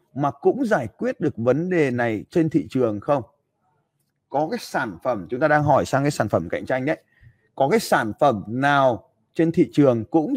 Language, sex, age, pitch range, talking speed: Vietnamese, male, 20-39, 120-150 Hz, 210 wpm